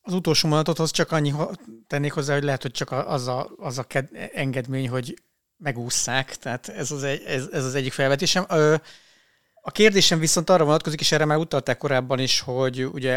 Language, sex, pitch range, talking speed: Hungarian, male, 120-145 Hz, 205 wpm